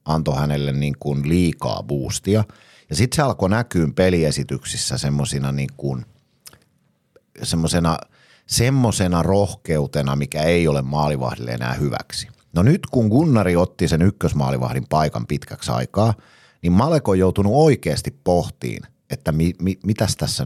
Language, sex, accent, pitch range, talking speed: Finnish, male, native, 80-115 Hz, 120 wpm